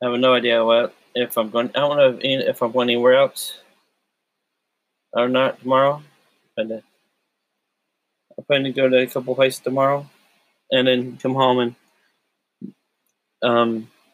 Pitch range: 120-130 Hz